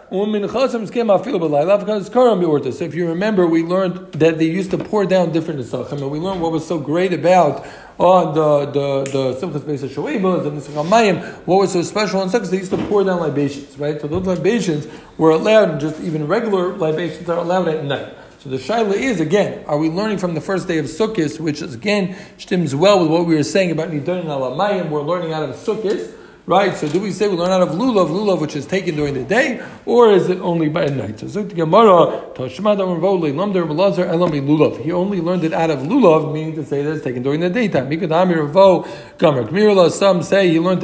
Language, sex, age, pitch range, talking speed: English, male, 50-69, 150-190 Hz, 195 wpm